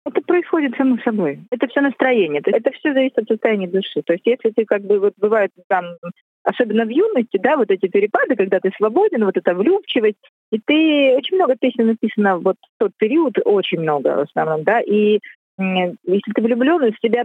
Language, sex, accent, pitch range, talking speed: Russian, female, native, 200-270 Hz, 195 wpm